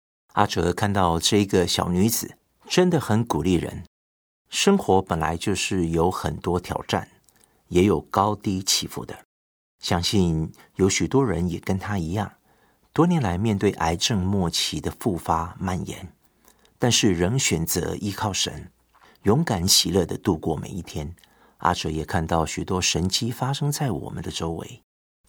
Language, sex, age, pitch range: Chinese, male, 50-69, 80-105 Hz